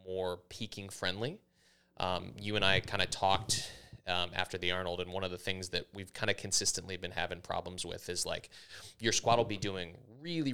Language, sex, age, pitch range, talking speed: English, male, 20-39, 90-105 Hz, 205 wpm